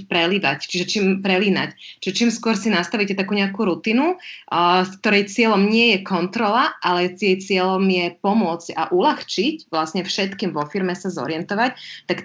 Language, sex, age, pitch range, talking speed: Slovak, female, 30-49, 175-200 Hz, 160 wpm